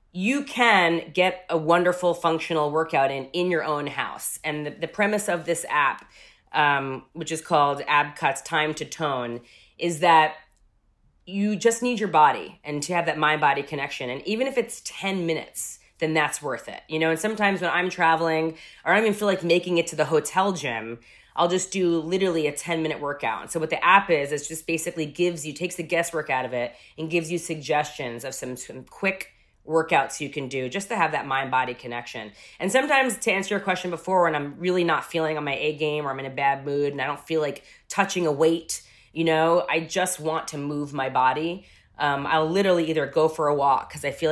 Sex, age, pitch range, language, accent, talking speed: female, 30-49, 140-175 Hz, English, American, 220 wpm